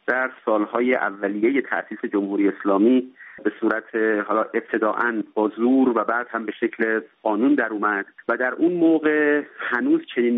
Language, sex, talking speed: Persian, male, 135 wpm